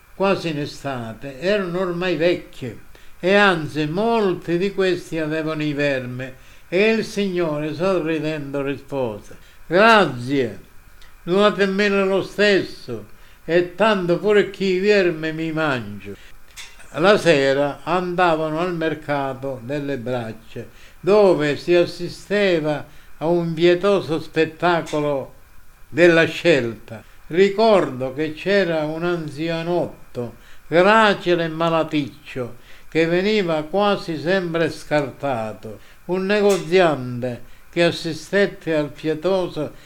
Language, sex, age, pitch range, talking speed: Italian, male, 60-79, 140-185 Hz, 100 wpm